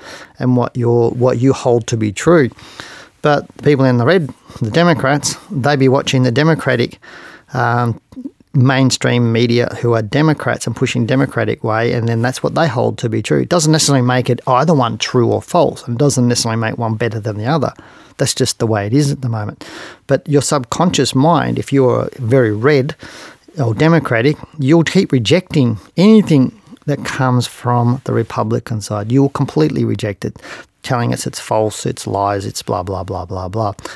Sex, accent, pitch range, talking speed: male, Australian, 115-140 Hz, 190 wpm